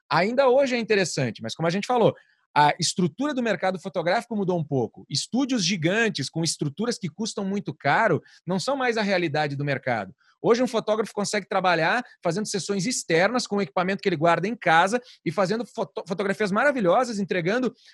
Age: 30-49